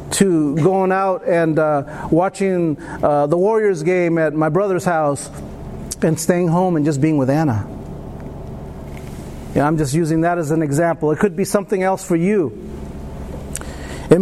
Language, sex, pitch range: English, male, 160-230 Hz